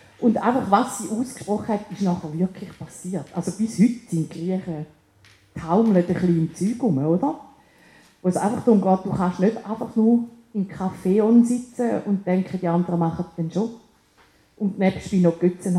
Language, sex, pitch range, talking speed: German, female, 160-205 Hz, 180 wpm